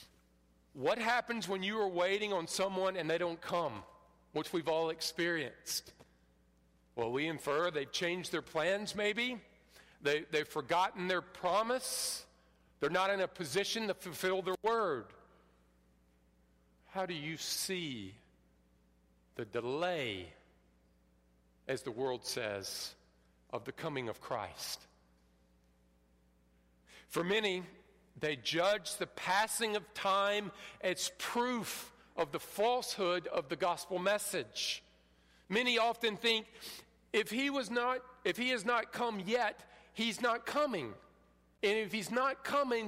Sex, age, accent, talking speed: male, 50-69, American, 125 wpm